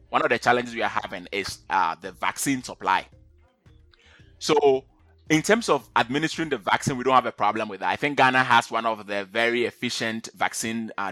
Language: English